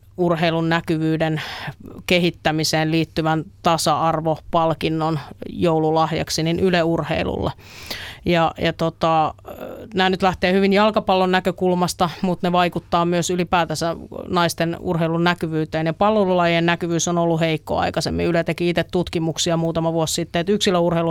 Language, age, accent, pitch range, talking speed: Finnish, 30-49, native, 165-180 Hz, 120 wpm